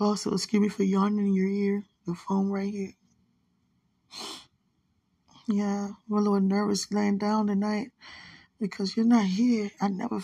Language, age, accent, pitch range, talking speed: English, 20-39, American, 195-225 Hz, 150 wpm